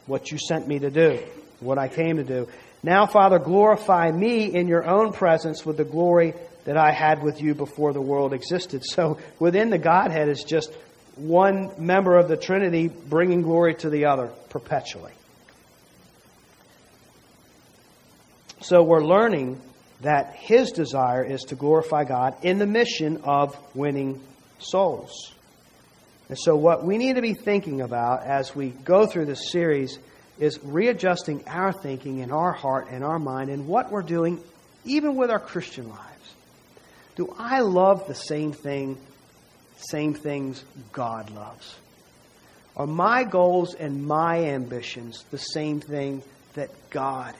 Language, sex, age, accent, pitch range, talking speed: English, male, 50-69, American, 140-185 Hz, 150 wpm